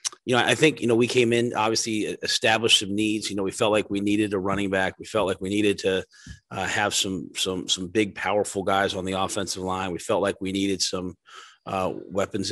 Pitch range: 95-105 Hz